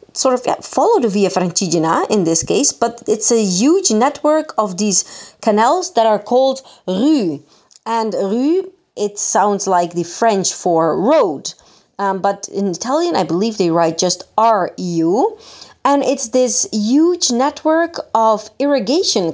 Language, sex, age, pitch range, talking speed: Italian, female, 30-49, 185-260 Hz, 150 wpm